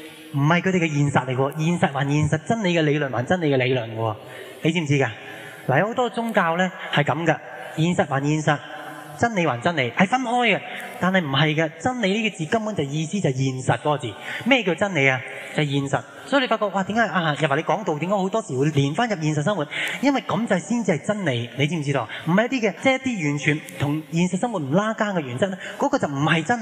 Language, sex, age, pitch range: Chinese, male, 20-39, 145-210 Hz